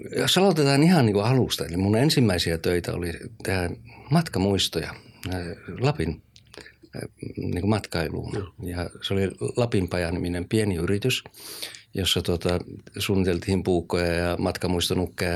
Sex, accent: male, native